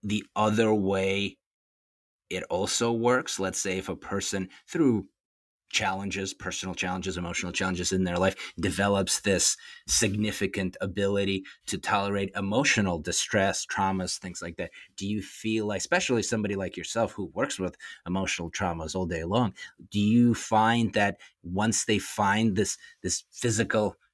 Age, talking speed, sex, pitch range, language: 30-49, 145 wpm, male, 95-110 Hz, English